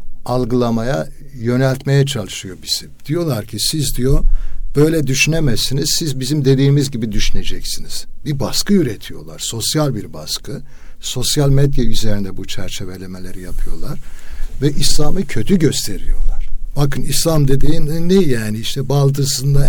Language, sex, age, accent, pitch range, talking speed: Turkish, male, 60-79, native, 105-140 Hz, 115 wpm